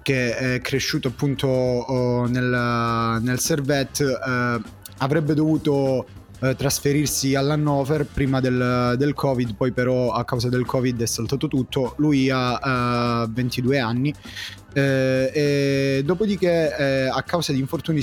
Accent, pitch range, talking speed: native, 125-150 Hz, 140 wpm